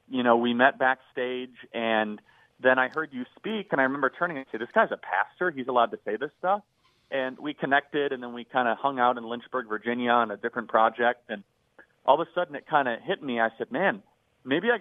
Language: English